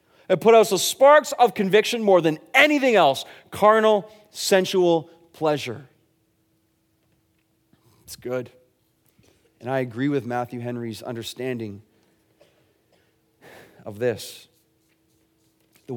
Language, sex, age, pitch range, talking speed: English, male, 30-49, 125-170 Hz, 100 wpm